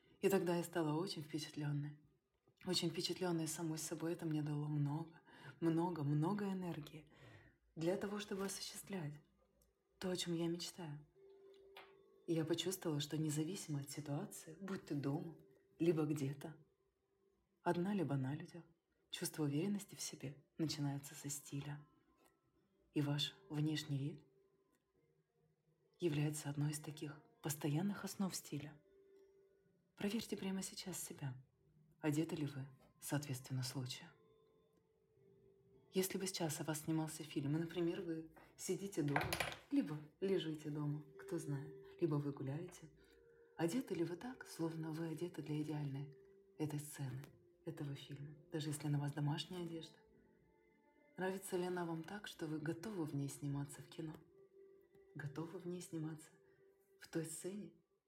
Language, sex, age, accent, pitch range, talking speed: Russian, female, 20-39, native, 150-185 Hz, 130 wpm